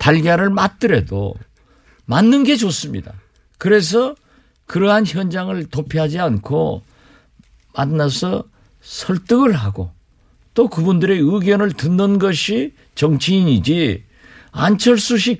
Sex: male